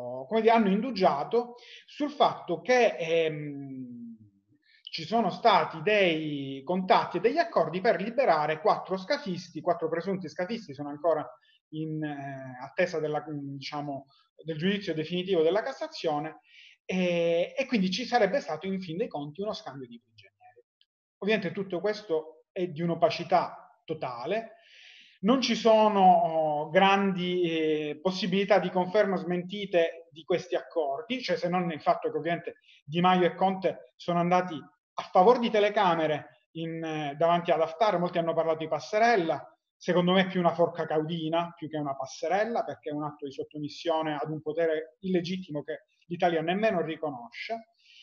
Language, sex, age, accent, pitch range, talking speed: Italian, male, 30-49, native, 155-210 Hz, 145 wpm